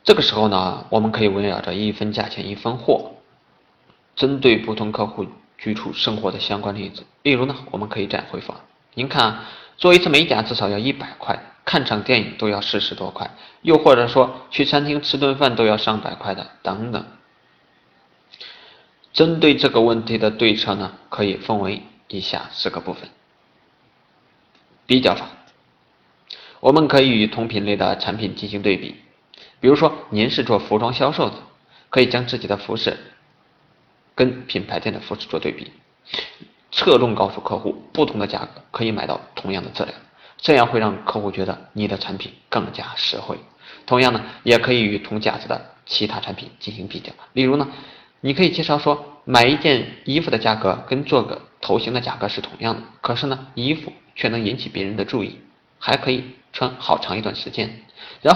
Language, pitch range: Chinese, 105-135 Hz